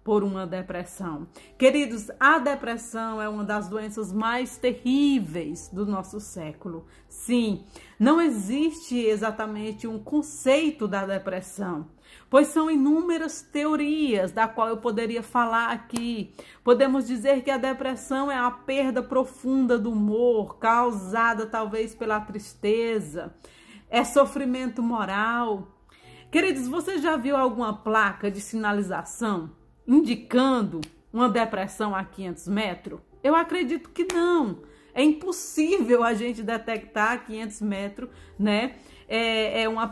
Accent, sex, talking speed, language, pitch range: Brazilian, female, 120 wpm, Portuguese, 210-275 Hz